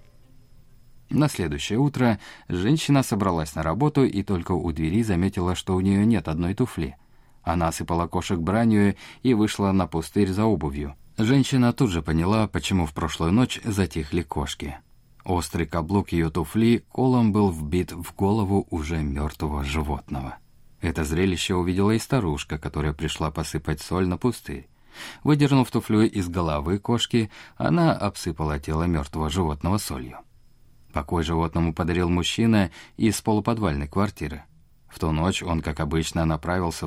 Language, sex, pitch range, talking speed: Russian, male, 80-110 Hz, 140 wpm